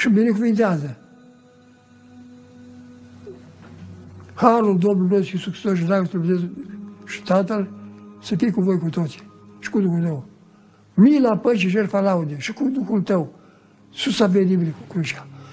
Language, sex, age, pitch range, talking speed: Romanian, male, 60-79, 160-230 Hz, 130 wpm